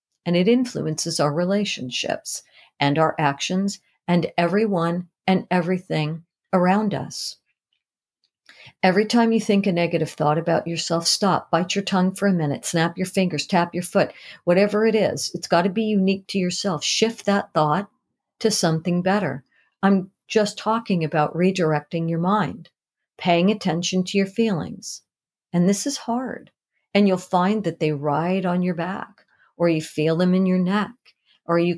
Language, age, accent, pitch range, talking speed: English, 50-69, American, 165-210 Hz, 160 wpm